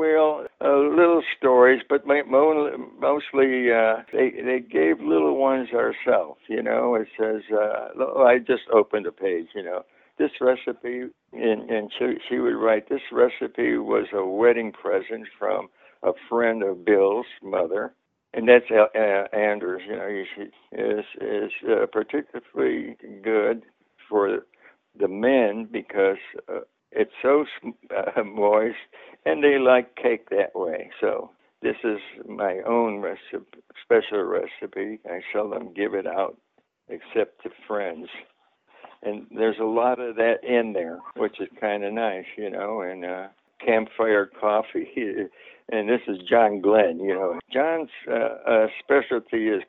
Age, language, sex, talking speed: 60-79, English, male, 140 wpm